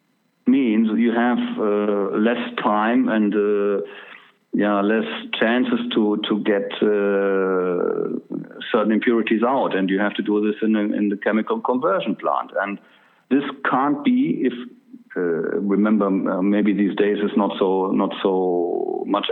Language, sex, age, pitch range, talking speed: English, male, 50-69, 100-120 Hz, 145 wpm